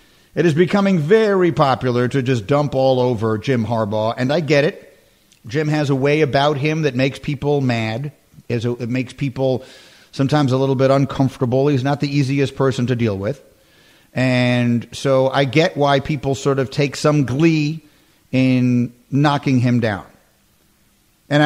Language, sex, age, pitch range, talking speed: English, male, 50-69, 130-160 Hz, 165 wpm